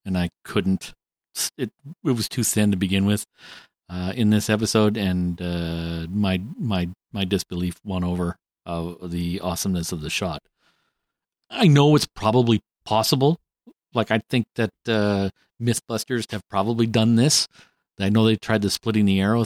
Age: 50-69